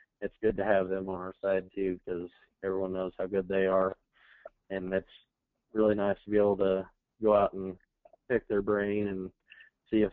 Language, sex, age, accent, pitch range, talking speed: English, male, 20-39, American, 95-105 Hz, 195 wpm